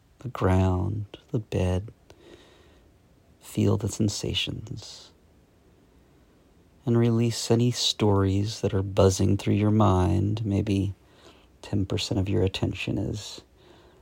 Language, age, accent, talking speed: English, 40-59, American, 100 wpm